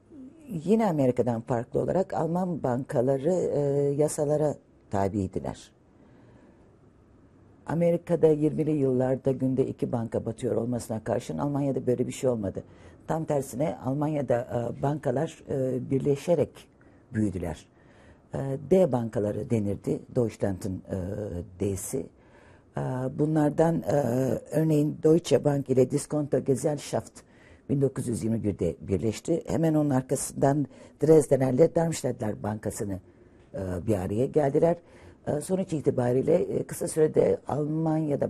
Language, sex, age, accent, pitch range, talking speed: Turkish, female, 60-79, native, 105-150 Hz, 100 wpm